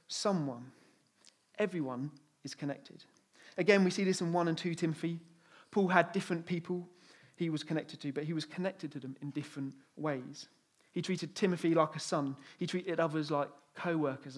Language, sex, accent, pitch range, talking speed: English, male, British, 145-185 Hz, 170 wpm